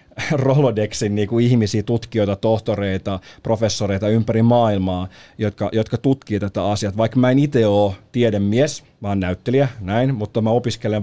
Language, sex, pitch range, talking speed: Finnish, male, 100-130 Hz, 140 wpm